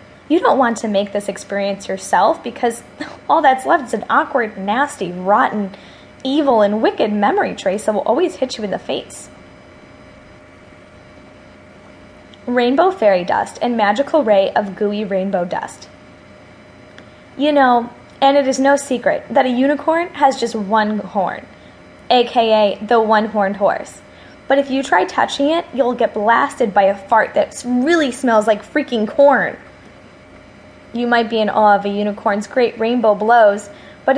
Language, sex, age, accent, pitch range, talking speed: English, female, 10-29, American, 200-265 Hz, 155 wpm